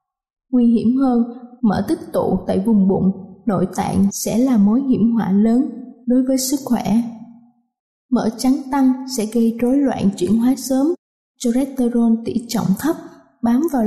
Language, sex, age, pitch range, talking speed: Vietnamese, female, 20-39, 225-265 Hz, 160 wpm